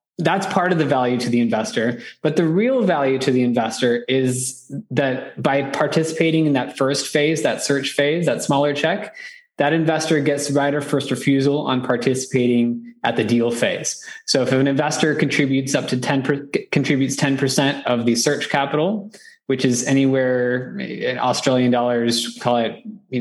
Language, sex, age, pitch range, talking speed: English, male, 20-39, 125-150 Hz, 170 wpm